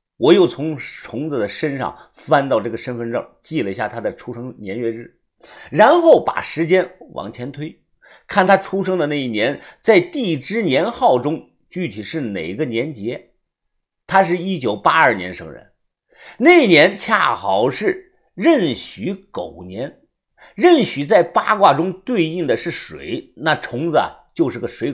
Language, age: Chinese, 50-69